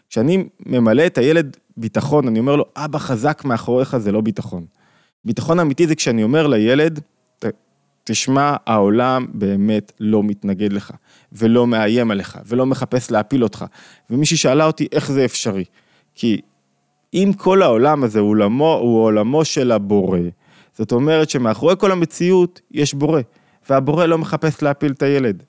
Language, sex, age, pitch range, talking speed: Hebrew, male, 20-39, 115-155 Hz, 145 wpm